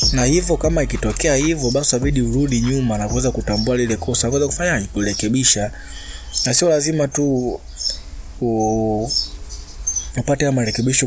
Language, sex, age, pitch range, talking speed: Swahili, male, 20-39, 105-135 Hz, 140 wpm